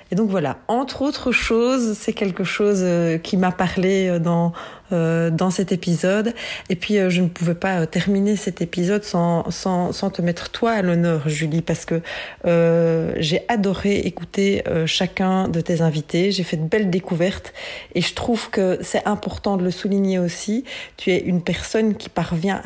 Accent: French